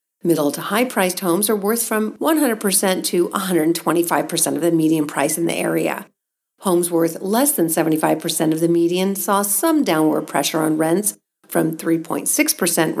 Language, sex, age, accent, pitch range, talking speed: English, female, 50-69, American, 165-230 Hz, 150 wpm